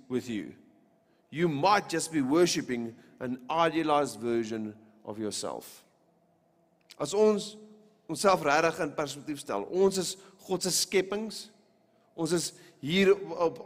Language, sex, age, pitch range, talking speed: English, male, 40-59, 130-170 Hz, 125 wpm